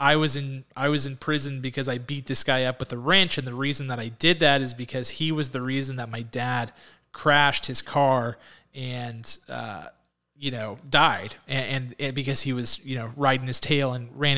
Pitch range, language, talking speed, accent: 130-155 Hz, English, 220 wpm, American